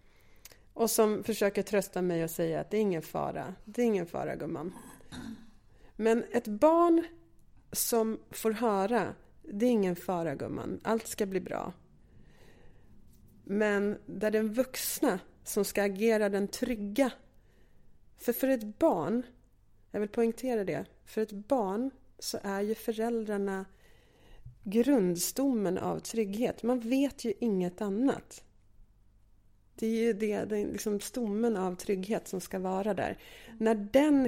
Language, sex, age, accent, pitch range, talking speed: English, female, 30-49, Swedish, 185-235 Hz, 135 wpm